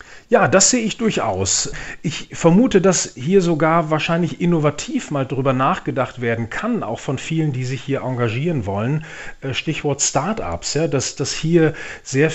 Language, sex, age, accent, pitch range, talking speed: German, male, 40-59, German, 130-155 Hz, 155 wpm